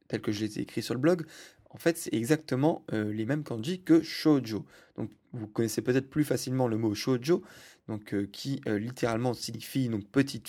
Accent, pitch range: French, 110-135 Hz